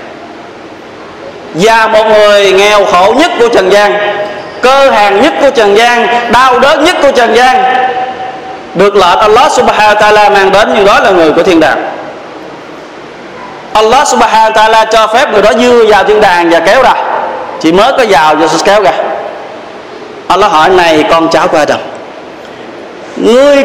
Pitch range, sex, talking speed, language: 180-255 Hz, male, 165 wpm, Vietnamese